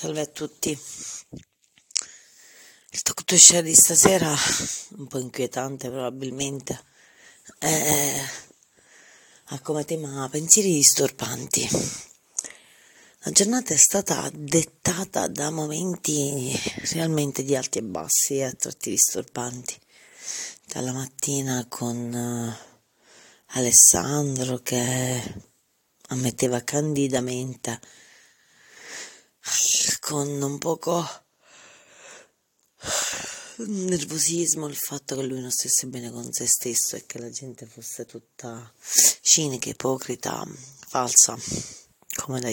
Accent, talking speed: native, 95 wpm